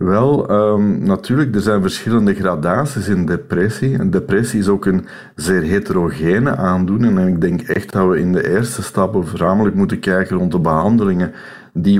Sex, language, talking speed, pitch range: male, Dutch, 170 wpm, 85-105 Hz